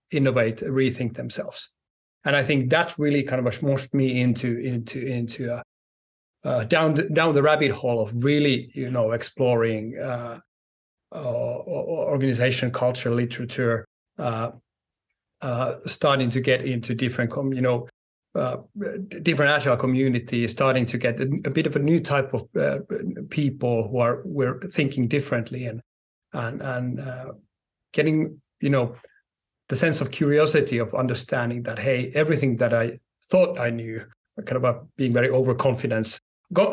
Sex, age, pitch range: male, 30-49, 120-140 Hz